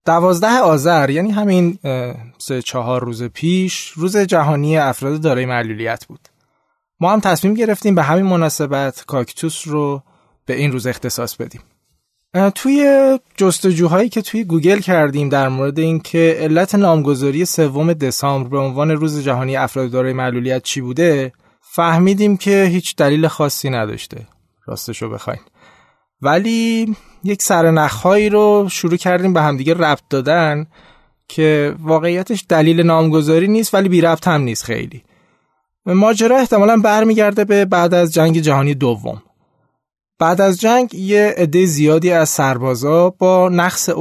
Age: 20-39